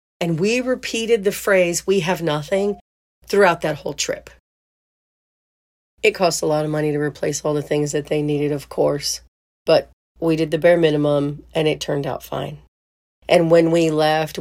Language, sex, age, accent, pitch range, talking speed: English, female, 40-59, American, 150-190 Hz, 180 wpm